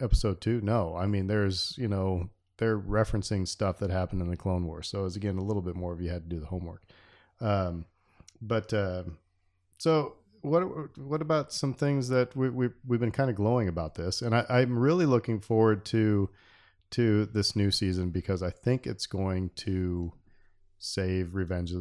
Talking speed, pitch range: 195 wpm, 90-110 Hz